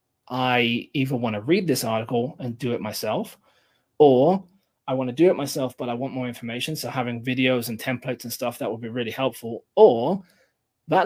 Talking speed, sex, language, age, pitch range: 200 wpm, male, English, 20-39, 120-145 Hz